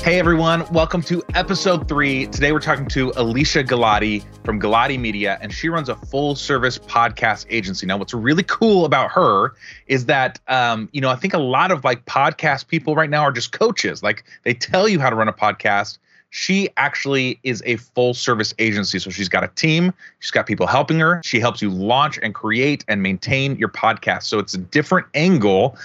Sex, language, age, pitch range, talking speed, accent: male, English, 30-49, 110-150 Hz, 205 wpm, American